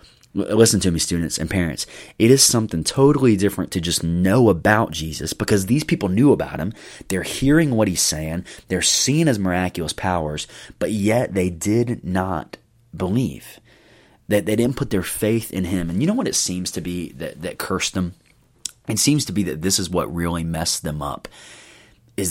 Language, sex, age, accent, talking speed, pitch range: English, male, 30-49, American, 190 wpm, 85-105 Hz